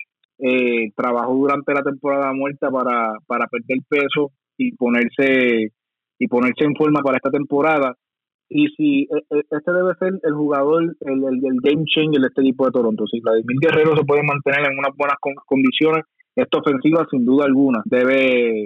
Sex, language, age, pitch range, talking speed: male, Spanish, 20-39, 130-155 Hz, 170 wpm